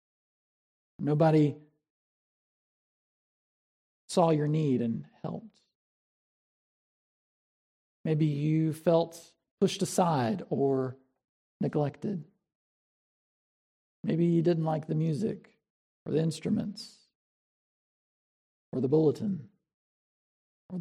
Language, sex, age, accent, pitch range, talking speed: English, male, 40-59, American, 150-200 Hz, 75 wpm